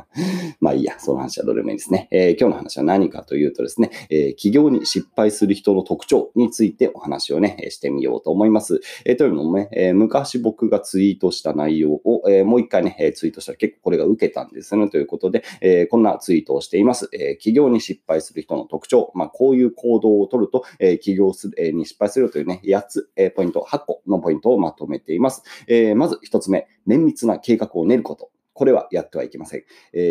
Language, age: Japanese, 30-49